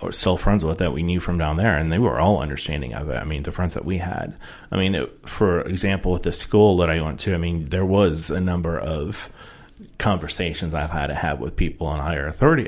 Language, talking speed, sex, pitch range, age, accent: English, 240 wpm, male, 85-105 Hz, 30-49, American